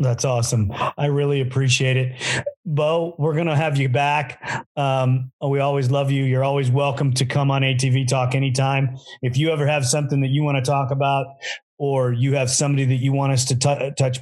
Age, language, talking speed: 30-49, English, 205 wpm